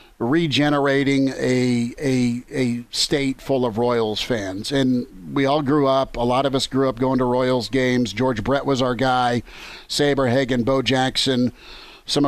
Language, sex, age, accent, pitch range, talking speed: English, male, 50-69, American, 125-145 Hz, 165 wpm